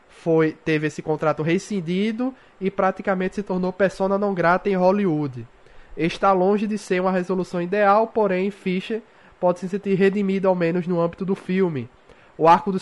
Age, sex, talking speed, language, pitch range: 20-39, male, 165 wpm, Portuguese, 145-185 Hz